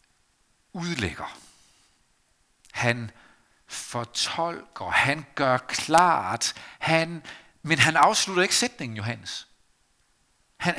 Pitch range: 125-175 Hz